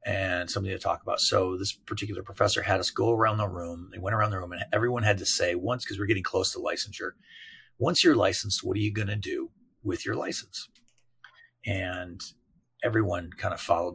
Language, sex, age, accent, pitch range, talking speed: English, male, 40-59, American, 95-115 Hz, 205 wpm